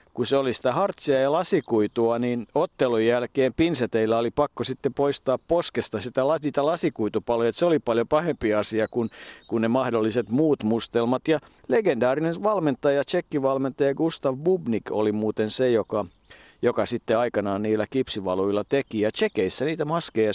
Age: 50-69